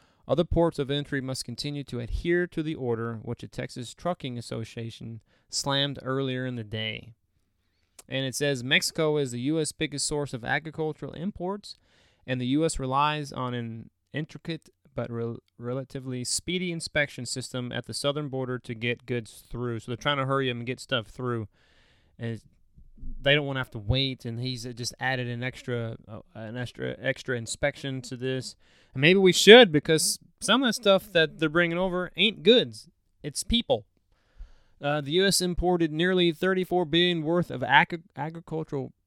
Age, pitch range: 20-39, 120-160 Hz